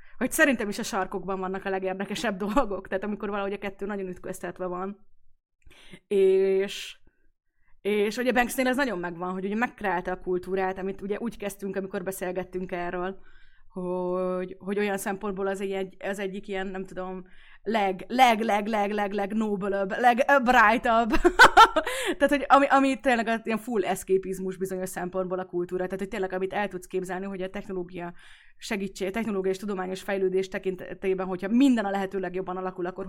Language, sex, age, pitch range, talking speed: Hungarian, female, 20-39, 185-225 Hz, 155 wpm